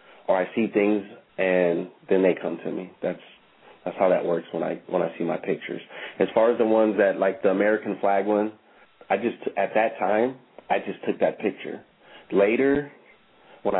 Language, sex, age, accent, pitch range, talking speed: English, male, 30-49, American, 95-105 Hz, 195 wpm